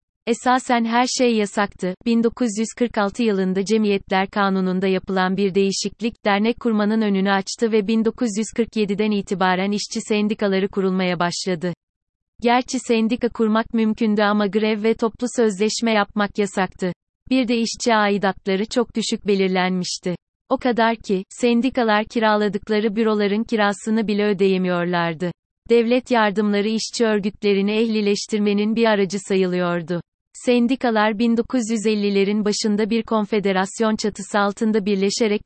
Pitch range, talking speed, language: 195-230 Hz, 110 wpm, Turkish